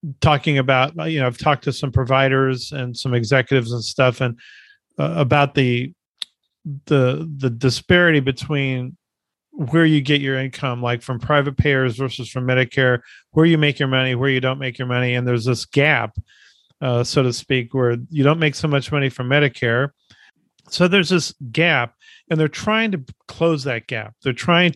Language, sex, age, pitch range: English, male, 40-59, 130-155 Hz